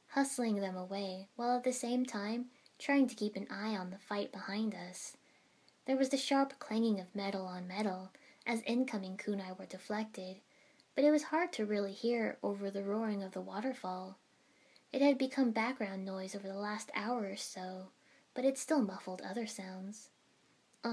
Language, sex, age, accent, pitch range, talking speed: English, female, 10-29, American, 195-260 Hz, 180 wpm